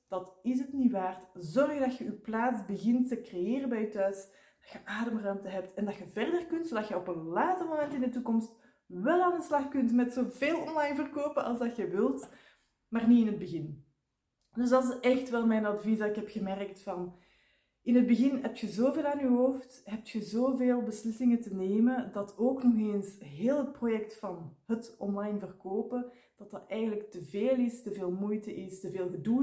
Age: 20-39